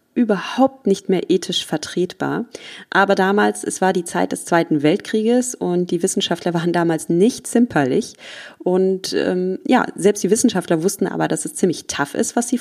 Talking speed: 170 wpm